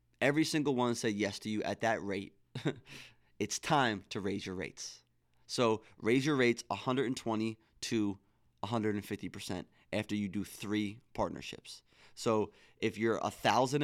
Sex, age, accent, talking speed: male, 30-49, American, 140 wpm